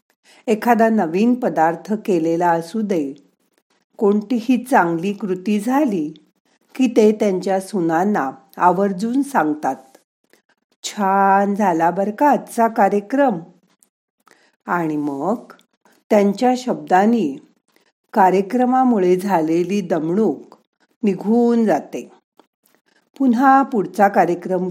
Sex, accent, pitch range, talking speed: female, native, 185-235 Hz, 85 wpm